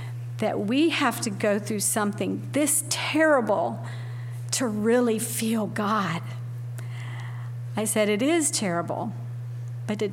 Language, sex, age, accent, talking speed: English, female, 40-59, American, 120 wpm